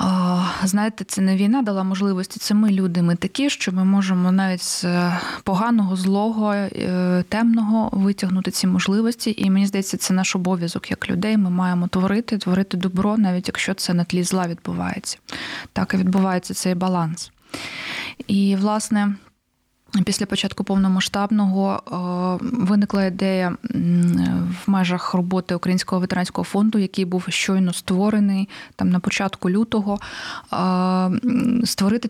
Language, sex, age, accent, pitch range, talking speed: Ukrainian, female, 20-39, native, 185-205 Hz, 130 wpm